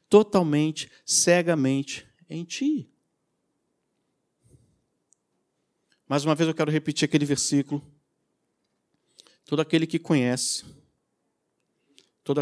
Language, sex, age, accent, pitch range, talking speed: Portuguese, male, 50-69, Brazilian, 150-205 Hz, 80 wpm